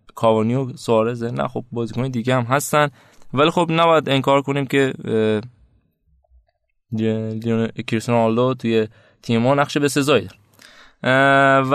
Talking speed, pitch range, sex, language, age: 105 wpm, 115-135 Hz, male, Persian, 20-39